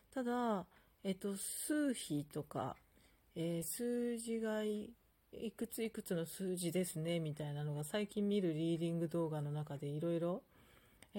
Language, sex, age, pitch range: Japanese, female, 40-59, 160-215 Hz